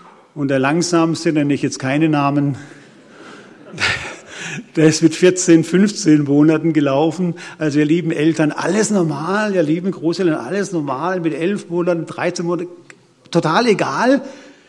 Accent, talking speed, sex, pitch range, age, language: German, 135 wpm, male, 160-225 Hz, 50-69, German